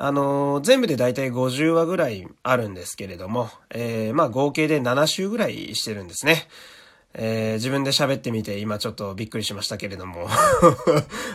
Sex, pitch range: male, 110-165 Hz